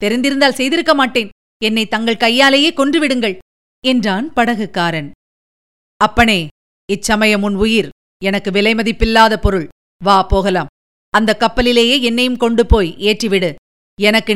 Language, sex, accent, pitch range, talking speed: Tamil, female, native, 205-255 Hz, 105 wpm